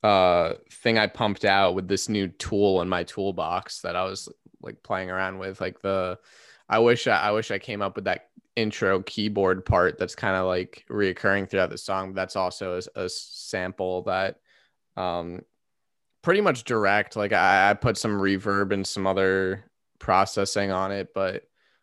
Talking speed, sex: 175 wpm, male